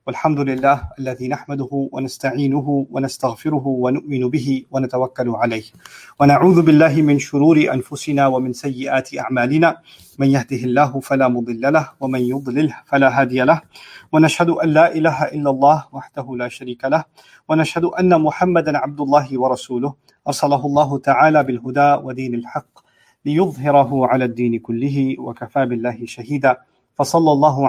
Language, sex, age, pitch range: English, male, 40-59, 125-145 Hz